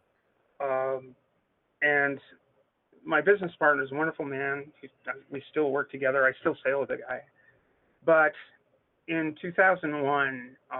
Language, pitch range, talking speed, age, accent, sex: English, 130-155 Hz, 135 wpm, 40-59, American, male